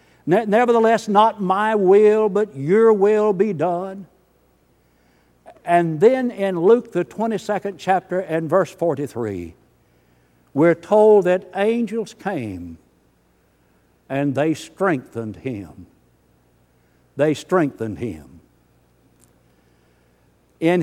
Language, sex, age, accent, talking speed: English, male, 60-79, American, 90 wpm